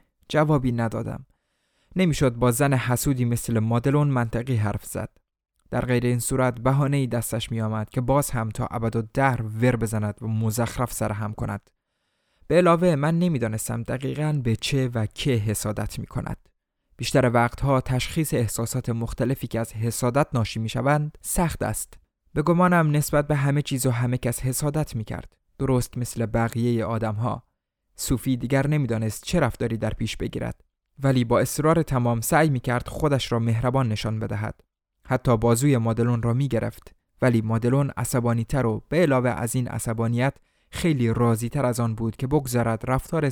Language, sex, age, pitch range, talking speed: Persian, male, 20-39, 115-135 Hz, 160 wpm